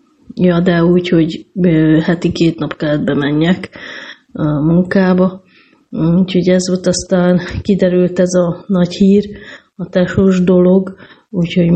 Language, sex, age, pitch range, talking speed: Hungarian, female, 30-49, 160-185 Hz, 120 wpm